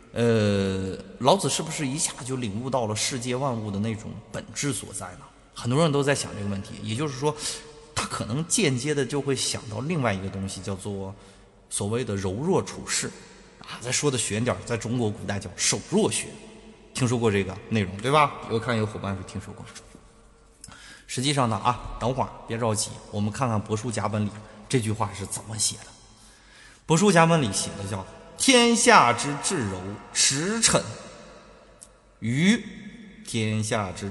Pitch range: 105-135 Hz